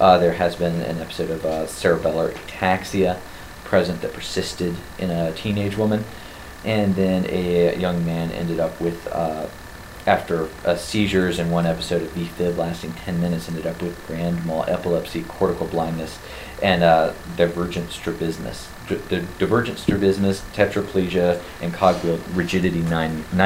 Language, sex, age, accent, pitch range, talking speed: English, male, 30-49, American, 80-95 Hz, 155 wpm